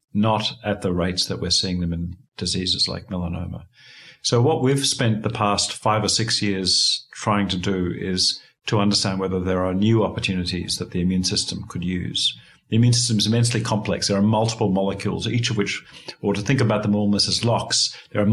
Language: English